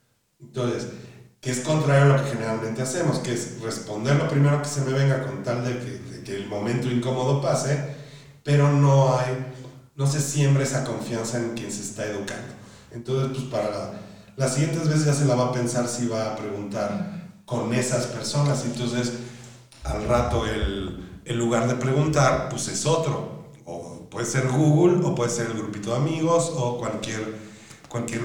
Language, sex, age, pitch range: Spanish, male, 40-59, 115-135 Hz